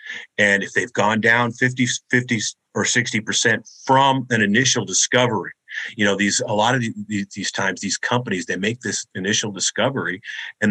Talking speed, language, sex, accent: 175 wpm, English, male, American